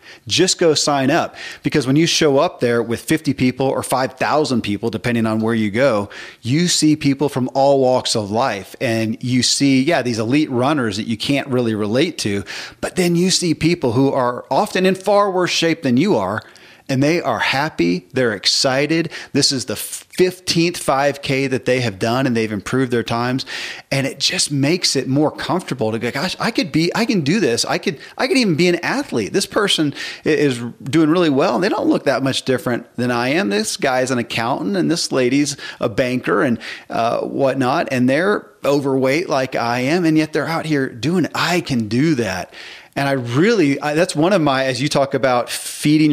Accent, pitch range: American, 120-150 Hz